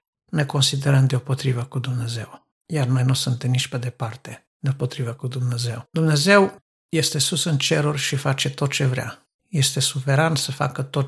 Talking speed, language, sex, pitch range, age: 160 wpm, Romanian, male, 130-155 Hz, 60-79